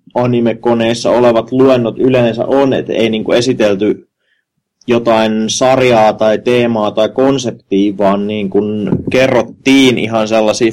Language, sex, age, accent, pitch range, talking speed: Finnish, male, 30-49, native, 105-120 Hz, 115 wpm